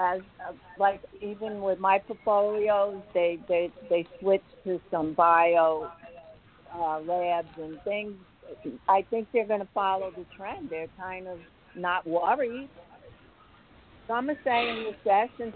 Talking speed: 135 wpm